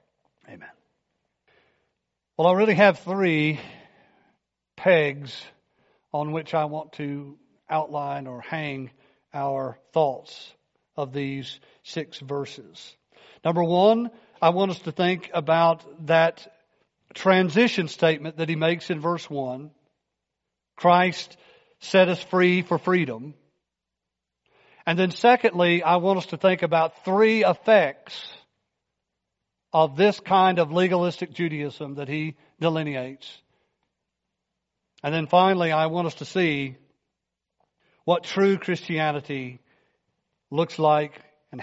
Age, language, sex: 50-69, English, male